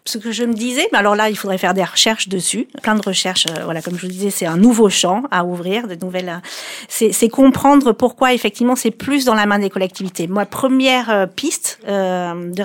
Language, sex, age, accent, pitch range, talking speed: French, female, 40-59, French, 185-235 Hz, 225 wpm